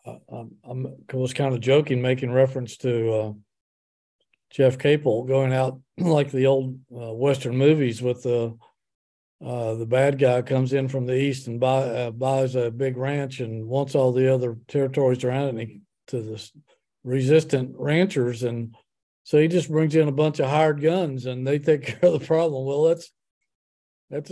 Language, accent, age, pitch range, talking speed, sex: English, American, 50-69, 120-155 Hz, 180 wpm, male